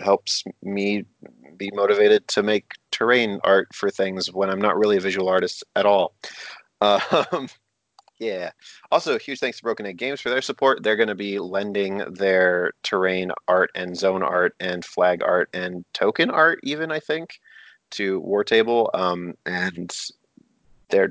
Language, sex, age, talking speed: English, male, 30-49, 165 wpm